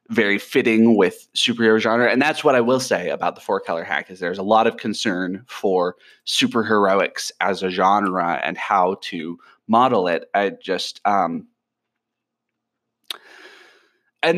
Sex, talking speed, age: male, 150 wpm, 20-39